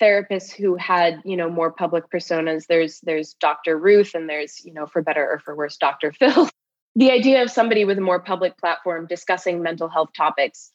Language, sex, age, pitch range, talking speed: English, female, 20-39, 160-180 Hz, 200 wpm